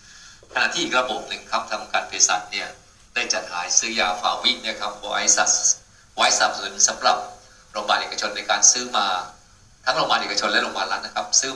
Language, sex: Thai, male